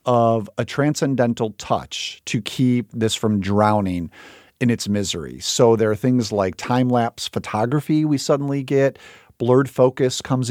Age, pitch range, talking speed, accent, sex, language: 40-59, 105-130 Hz, 145 wpm, American, male, English